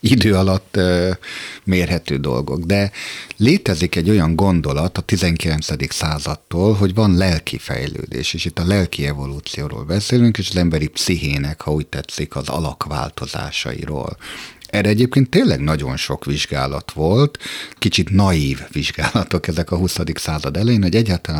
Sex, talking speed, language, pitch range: male, 135 wpm, Hungarian, 75-100 Hz